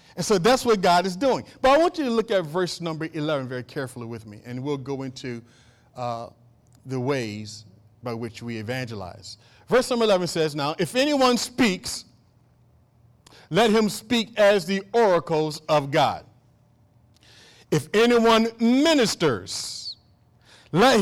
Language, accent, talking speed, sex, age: English, American, 150 wpm, male, 50-69